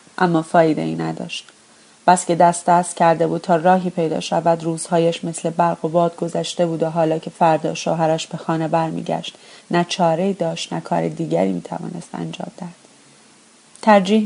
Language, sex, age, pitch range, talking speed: Persian, female, 30-49, 165-185 Hz, 170 wpm